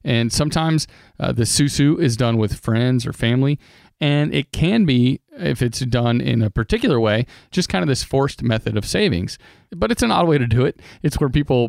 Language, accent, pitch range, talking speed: English, American, 110-140 Hz, 210 wpm